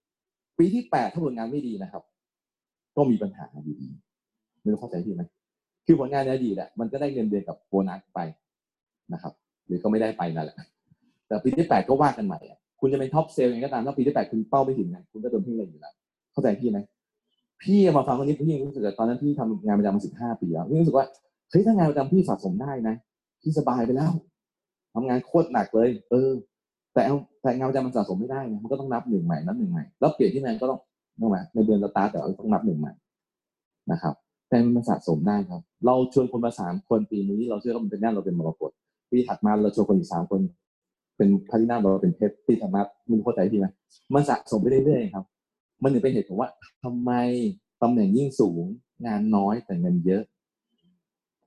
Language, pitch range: English, 110-175 Hz